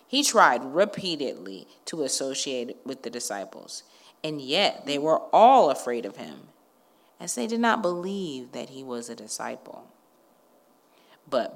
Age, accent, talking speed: 40-59, American, 140 wpm